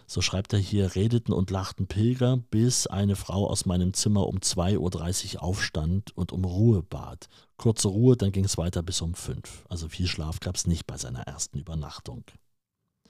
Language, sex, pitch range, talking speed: German, male, 95-110 Hz, 190 wpm